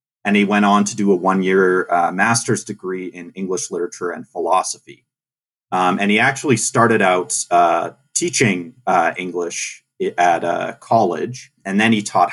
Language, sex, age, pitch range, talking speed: English, male, 30-49, 95-125 Hz, 165 wpm